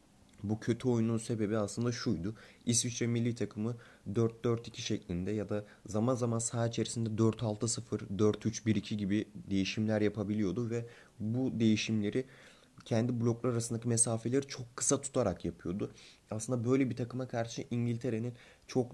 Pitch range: 105-120 Hz